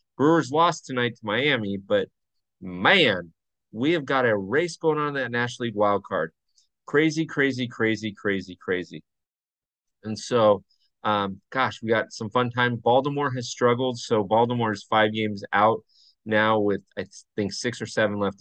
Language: English